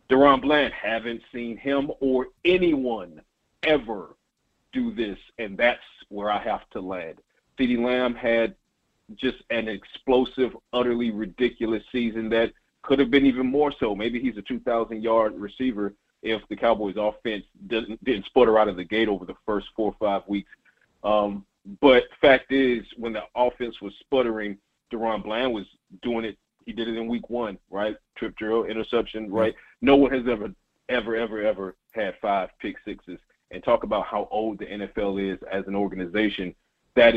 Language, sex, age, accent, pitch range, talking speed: English, male, 40-59, American, 105-120 Hz, 170 wpm